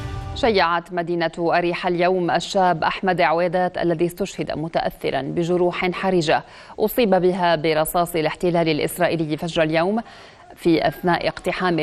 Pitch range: 160-185 Hz